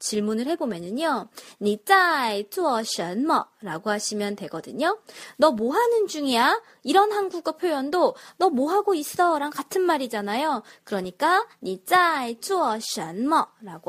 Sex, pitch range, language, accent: female, 215-335 Hz, Korean, native